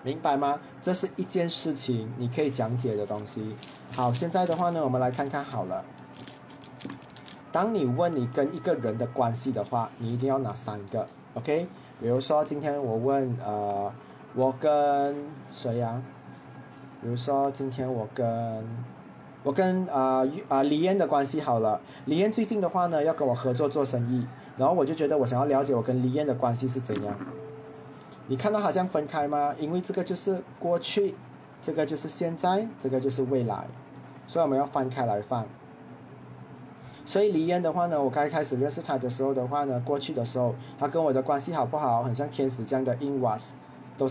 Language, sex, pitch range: Chinese, male, 125-150 Hz